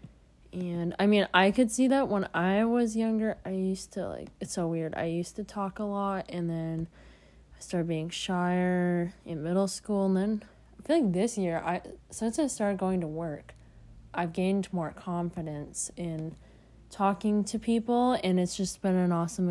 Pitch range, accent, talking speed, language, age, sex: 170-210 Hz, American, 190 wpm, English, 20-39, female